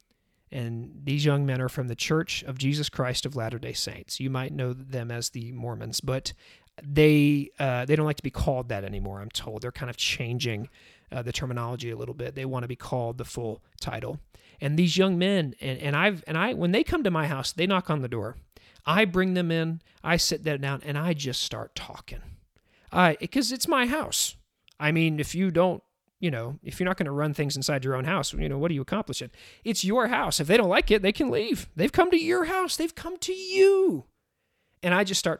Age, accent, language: 40-59, American, English